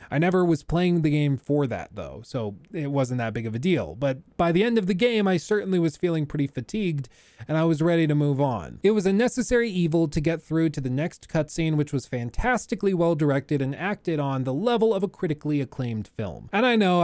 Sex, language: male, English